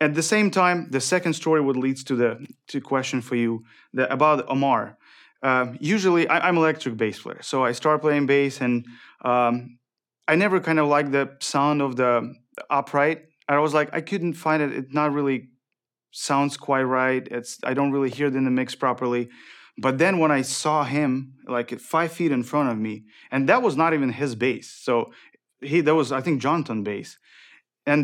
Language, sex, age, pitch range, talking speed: English, male, 30-49, 125-150 Hz, 205 wpm